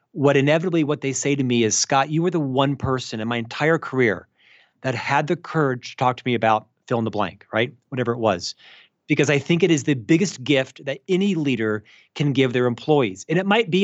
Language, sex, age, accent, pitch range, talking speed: English, male, 40-59, American, 130-165 Hz, 235 wpm